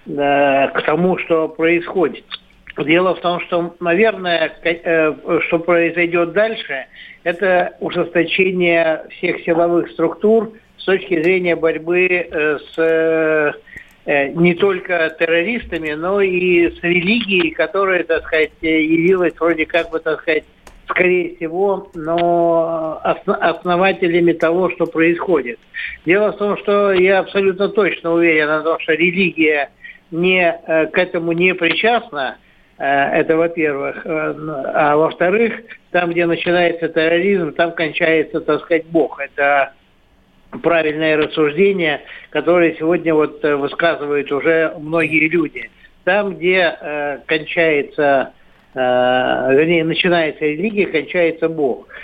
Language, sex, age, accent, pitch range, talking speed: Russian, male, 60-79, native, 155-180 Hz, 105 wpm